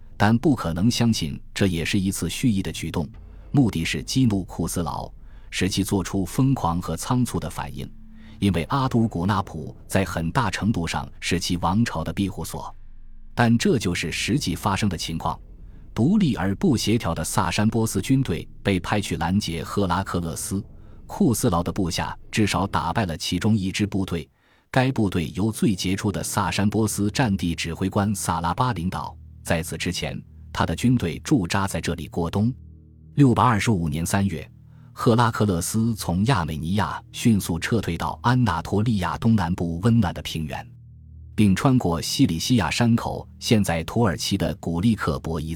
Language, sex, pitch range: Chinese, male, 85-110 Hz